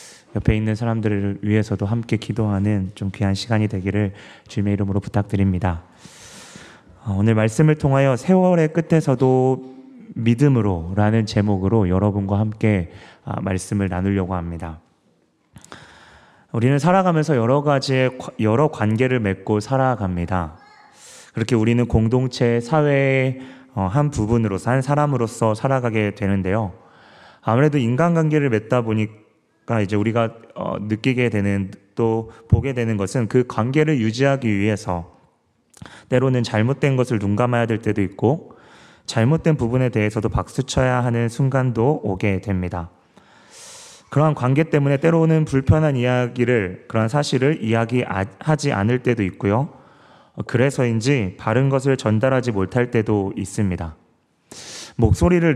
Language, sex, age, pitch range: Korean, male, 30-49, 105-130 Hz